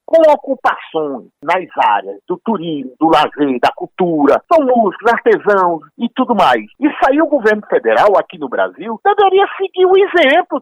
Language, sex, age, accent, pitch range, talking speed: Portuguese, male, 50-69, Brazilian, 215-335 Hz, 160 wpm